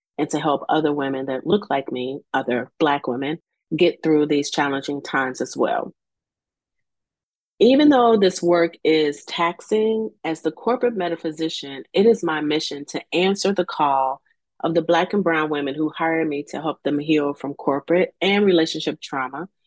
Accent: American